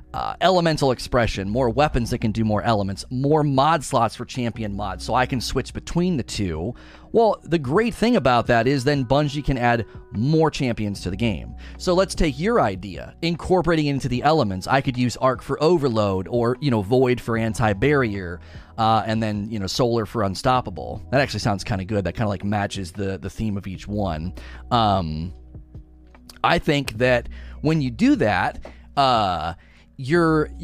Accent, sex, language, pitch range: American, male, English, 105-145 Hz